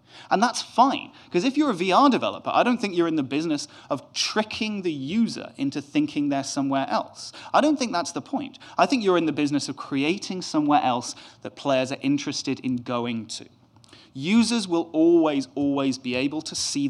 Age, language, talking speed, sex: 30-49, English, 200 wpm, male